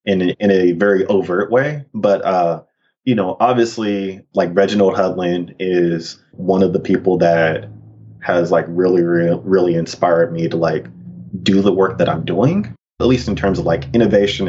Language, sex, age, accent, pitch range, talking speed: English, male, 30-49, American, 95-120 Hz, 175 wpm